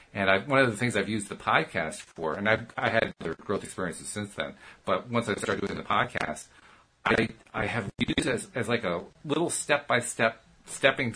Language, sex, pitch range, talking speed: English, male, 95-120 Hz, 210 wpm